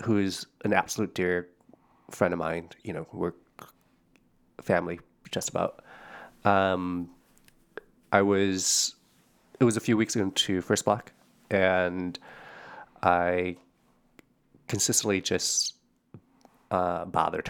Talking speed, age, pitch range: 105 wpm, 20-39, 90-110 Hz